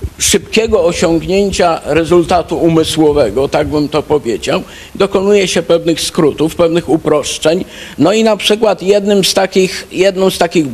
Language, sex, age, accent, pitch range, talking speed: Polish, male, 50-69, native, 155-180 Hz, 115 wpm